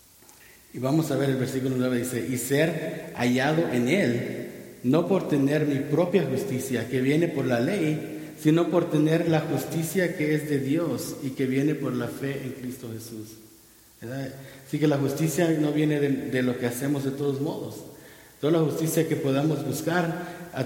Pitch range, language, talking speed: 135-155 Hz, English, 185 wpm